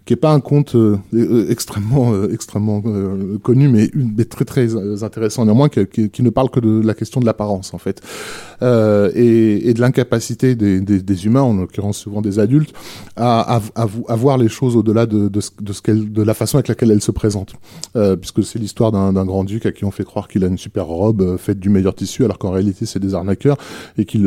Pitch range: 105-125 Hz